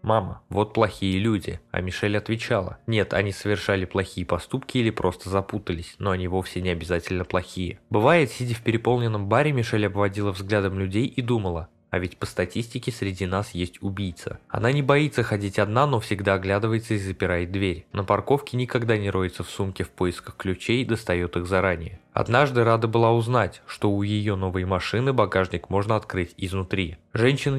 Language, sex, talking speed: Russian, male, 170 wpm